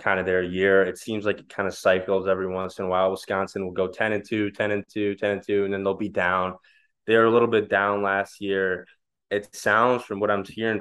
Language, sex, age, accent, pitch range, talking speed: English, male, 20-39, American, 90-100 Hz, 255 wpm